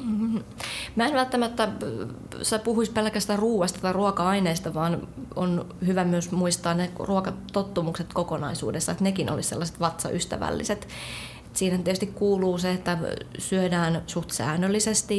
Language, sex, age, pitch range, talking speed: Finnish, female, 20-39, 170-195 Hz, 115 wpm